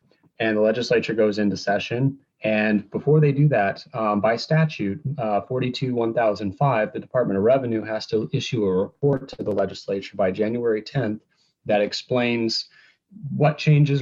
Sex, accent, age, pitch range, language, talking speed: male, American, 30-49, 105-135 Hz, English, 155 wpm